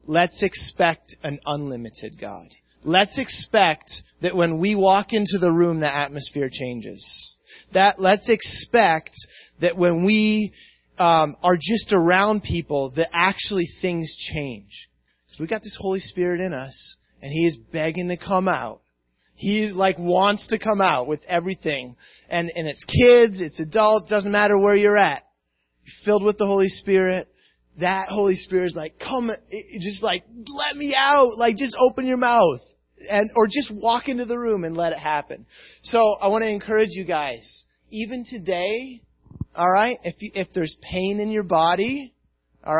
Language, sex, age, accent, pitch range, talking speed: English, male, 30-49, American, 160-215 Hz, 170 wpm